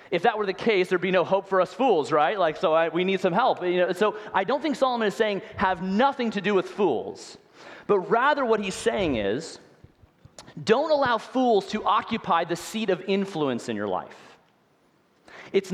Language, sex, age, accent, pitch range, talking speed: English, male, 30-49, American, 170-225 Hz, 195 wpm